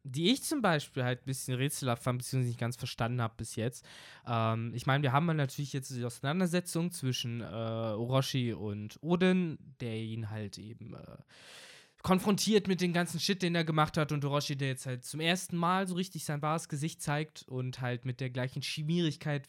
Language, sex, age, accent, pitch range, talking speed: German, male, 20-39, German, 120-160 Hz, 200 wpm